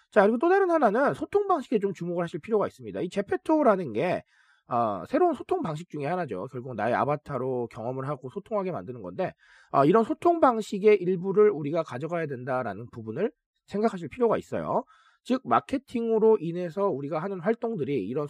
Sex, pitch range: male, 150-225 Hz